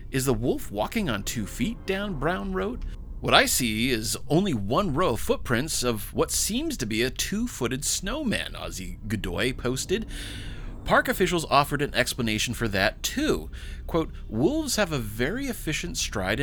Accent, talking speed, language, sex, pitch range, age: American, 170 wpm, English, male, 105-160 Hz, 30-49